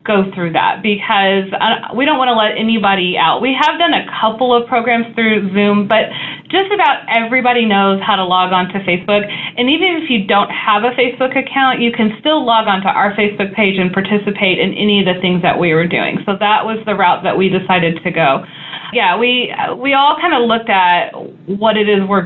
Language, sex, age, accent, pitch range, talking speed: English, female, 30-49, American, 185-225 Hz, 225 wpm